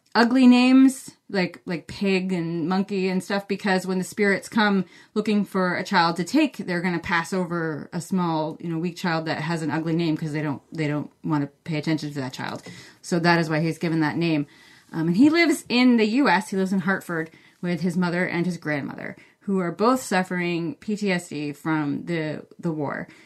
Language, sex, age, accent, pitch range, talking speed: English, female, 30-49, American, 160-195 Hz, 215 wpm